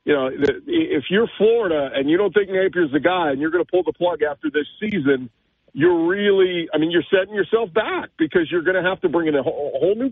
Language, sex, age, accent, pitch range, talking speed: English, male, 40-59, American, 150-235 Hz, 245 wpm